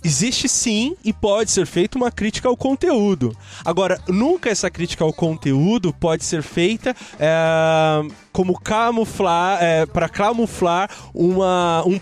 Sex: male